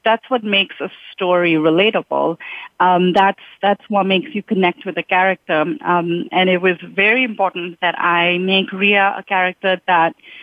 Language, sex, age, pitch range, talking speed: English, female, 30-49, 170-205 Hz, 165 wpm